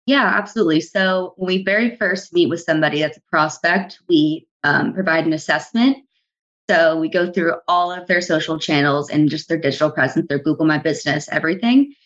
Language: English